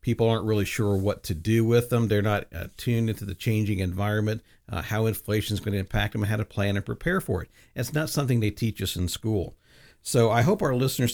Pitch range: 105-125 Hz